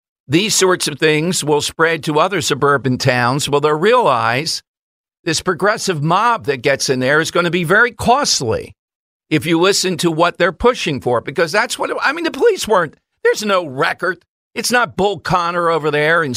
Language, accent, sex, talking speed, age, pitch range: English, American, male, 190 wpm, 50-69, 150-195 Hz